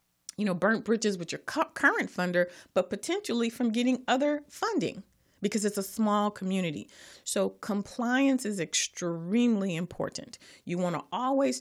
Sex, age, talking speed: female, 40-59, 145 wpm